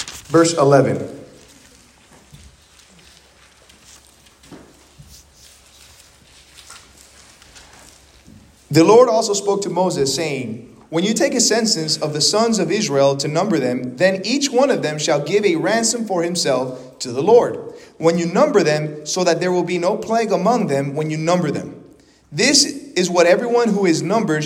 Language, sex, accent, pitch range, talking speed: English, male, American, 150-205 Hz, 145 wpm